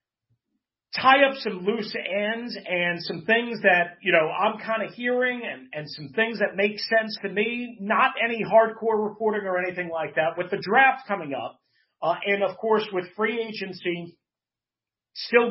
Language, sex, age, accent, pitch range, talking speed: English, male, 40-59, American, 175-225 Hz, 175 wpm